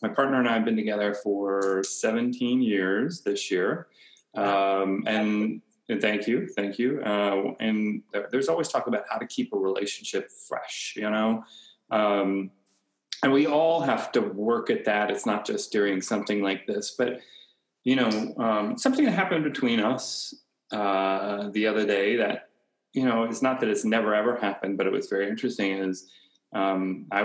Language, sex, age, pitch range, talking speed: English, male, 30-49, 100-140 Hz, 175 wpm